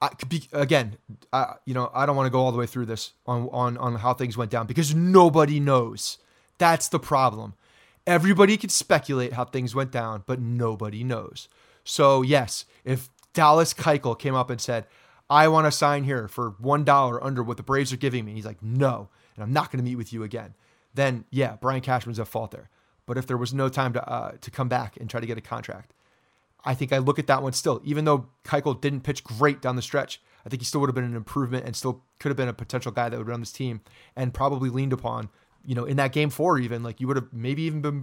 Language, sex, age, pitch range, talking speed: English, male, 30-49, 120-145 Hz, 245 wpm